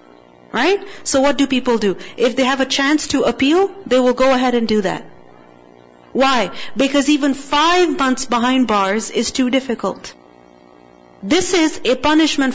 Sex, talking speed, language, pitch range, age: female, 165 wpm, English, 210-295 Hz, 40-59